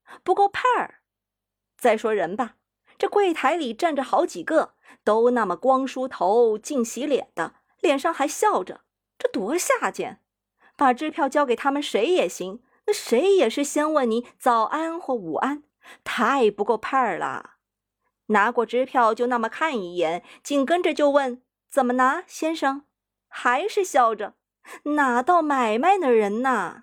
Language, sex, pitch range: Chinese, female, 230-330 Hz